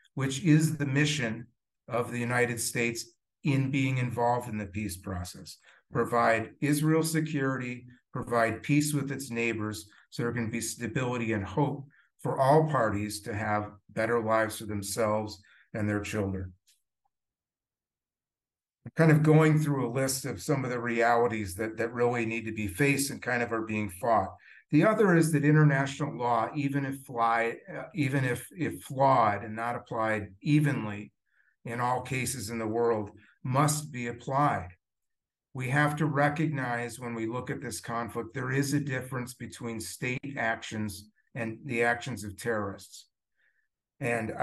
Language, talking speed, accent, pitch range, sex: English, 150 wpm, American, 110-140 Hz, male